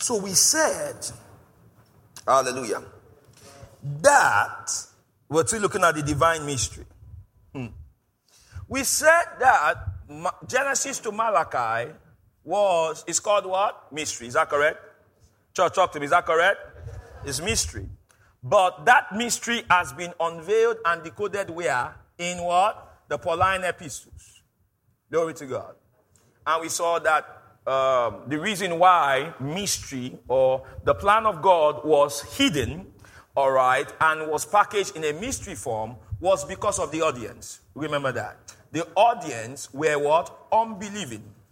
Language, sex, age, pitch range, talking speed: English, male, 50-69, 125-185 Hz, 130 wpm